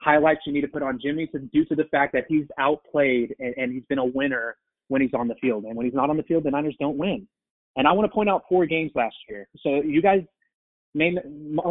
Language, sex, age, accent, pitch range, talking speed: English, male, 20-39, American, 135-180 Hz, 255 wpm